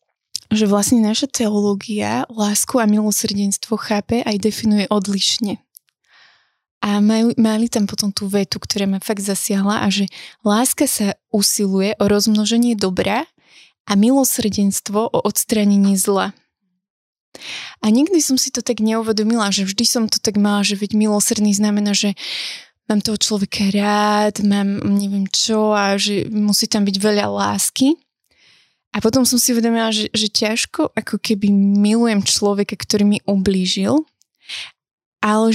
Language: Slovak